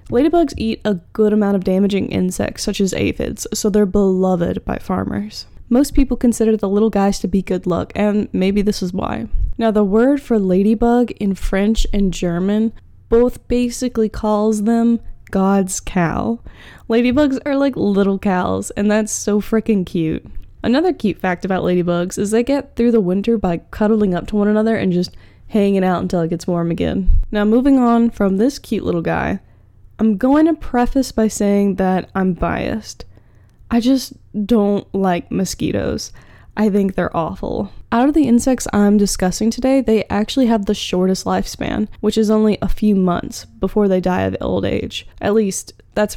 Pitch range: 185-230 Hz